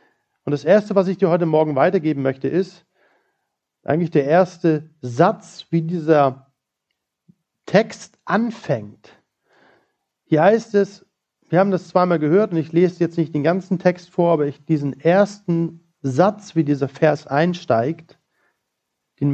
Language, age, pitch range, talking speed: German, 40-59, 145-180 Hz, 145 wpm